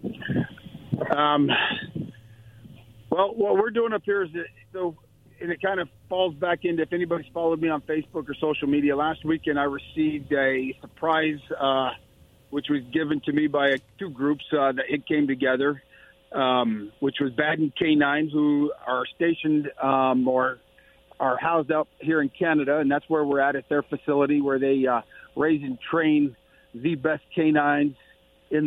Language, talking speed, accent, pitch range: English, 170 wpm, American, 135-155 Hz